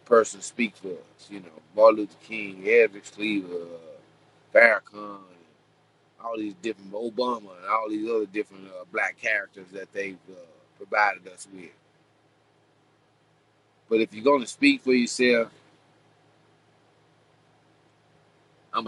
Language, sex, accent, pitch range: English, male, American, 105-145 Hz